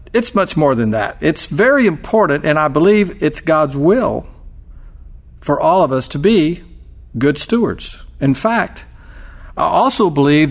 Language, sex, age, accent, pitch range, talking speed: English, male, 50-69, American, 125-175 Hz, 155 wpm